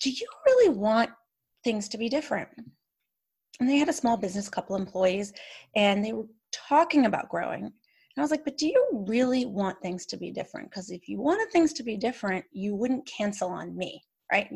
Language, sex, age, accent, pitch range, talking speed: English, female, 30-49, American, 200-295 Hz, 200 wpm